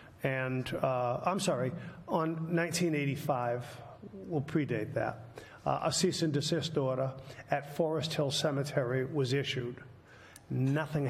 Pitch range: 130-155 Hz